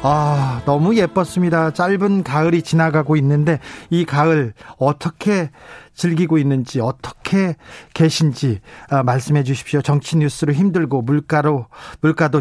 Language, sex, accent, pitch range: Korean, male, native, 135-175 Hz